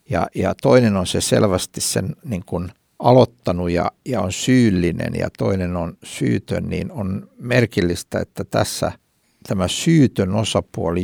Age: 60-79